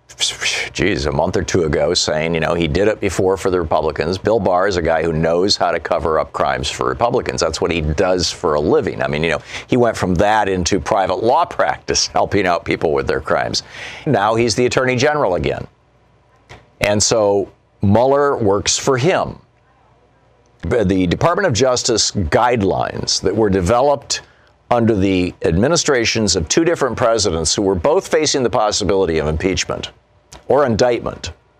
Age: 50-69